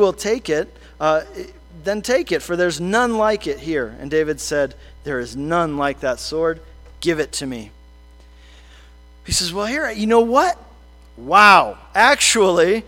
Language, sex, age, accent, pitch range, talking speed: English, male, 40-59, American, 150-220 Hz, 165 wpm